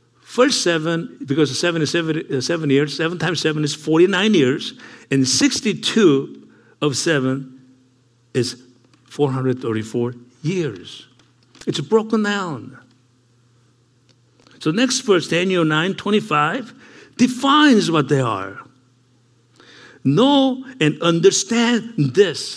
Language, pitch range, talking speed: English, 125-185 Hz, 100 wpm